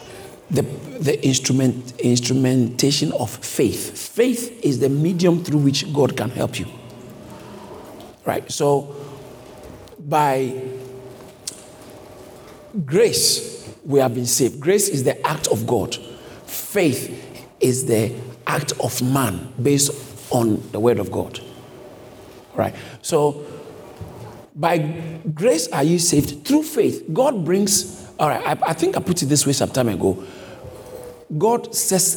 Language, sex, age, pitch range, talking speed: English, male, 50-69, 125-175 Hz, 125 wpm